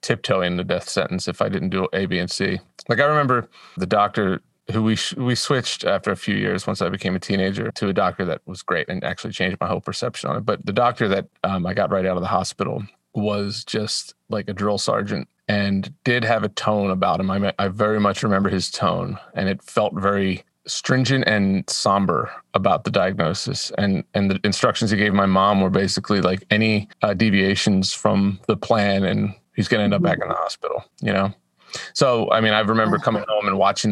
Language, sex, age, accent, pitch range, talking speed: English, male, 30-49, American, 95-110 Hz, 220 wpm